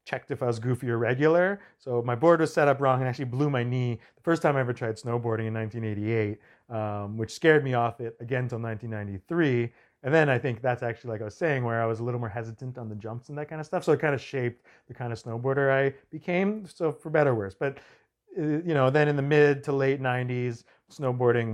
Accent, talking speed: American, 250 wpm